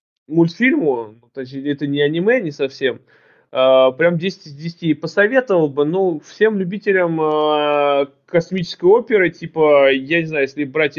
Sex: male